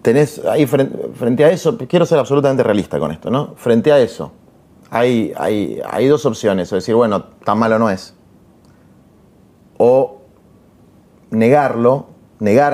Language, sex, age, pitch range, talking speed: Spanish, male, 30-49, 100-145 Hz, 145 wpm